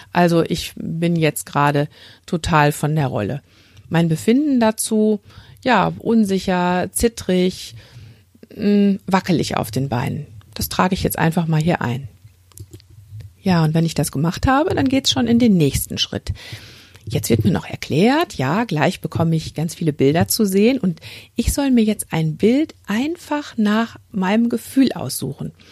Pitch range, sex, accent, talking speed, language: 125-210 Hz, female, German, 155 wpm, German